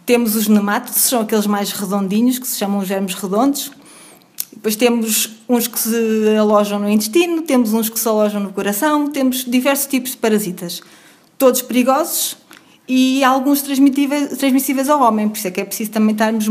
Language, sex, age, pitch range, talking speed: Portuguese, female, 20-39, 210-260 Hz, 175 wpm